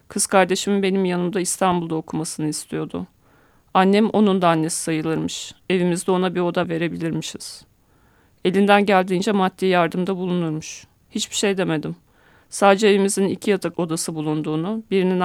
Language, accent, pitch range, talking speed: Turkish, native, 165-190 Hz, 125 wpm